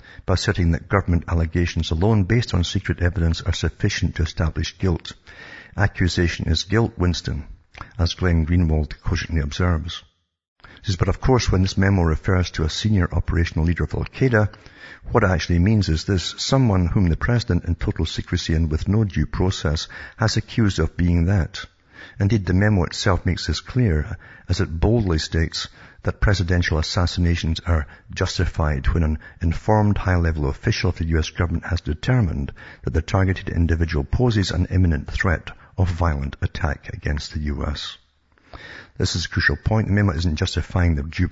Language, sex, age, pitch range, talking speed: English, male, 60-79, 80-100 Hz, 170 wpm